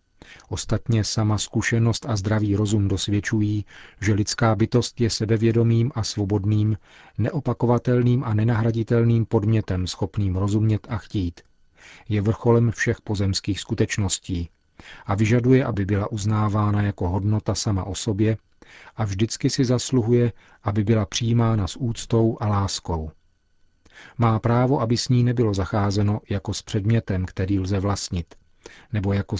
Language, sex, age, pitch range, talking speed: Czech, male, 40-59, 100-115 Hz, 130 wpm